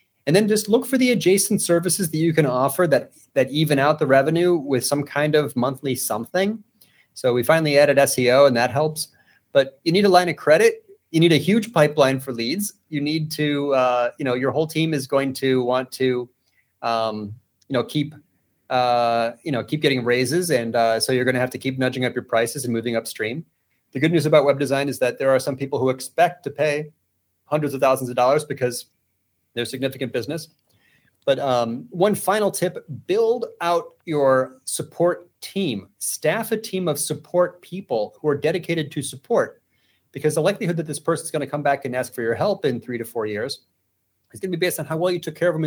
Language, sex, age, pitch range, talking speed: English, male, 30-49, 130-175 Hz, 220 wpm